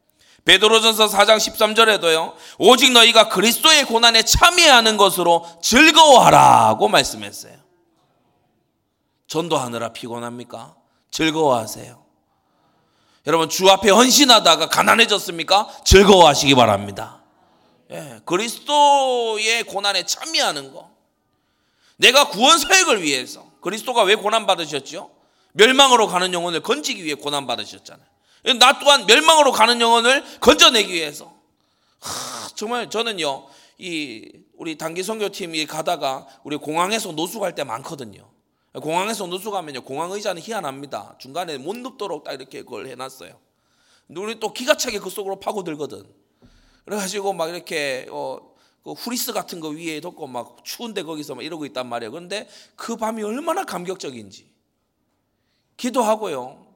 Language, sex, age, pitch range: Korean, male, 30-49, 165-235 Hz